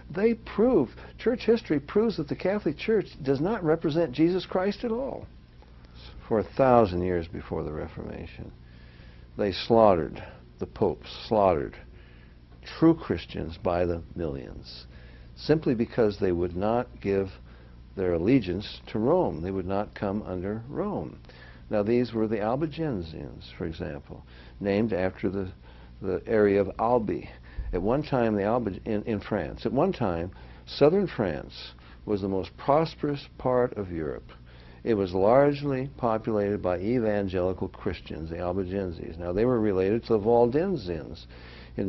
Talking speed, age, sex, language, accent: 145 wpm, 60-79, male, English, American